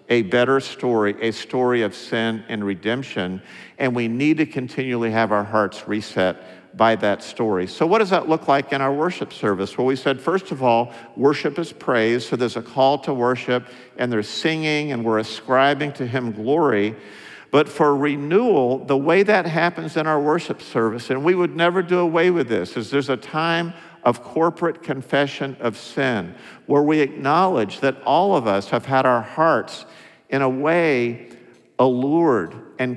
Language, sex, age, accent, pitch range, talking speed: English, male, 50-69, American, 115-150 Hz, 180 wpm